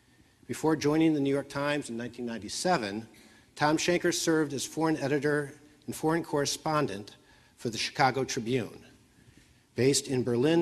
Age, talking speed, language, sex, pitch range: 50-69, 135 wpm, English, male, 120-145 Hz